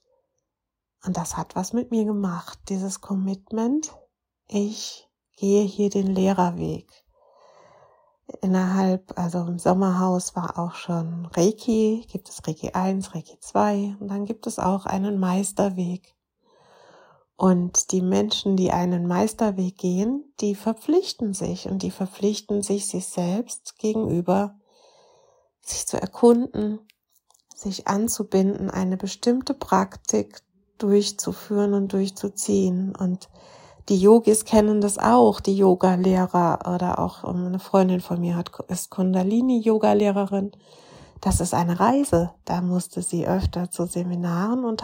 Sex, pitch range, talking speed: female, 180-215 Hz, 125 wpm